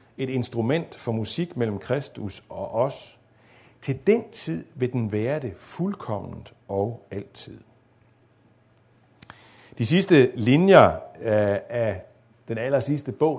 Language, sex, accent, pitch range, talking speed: Danish, male, native, 110-130 Hz, 110 wpm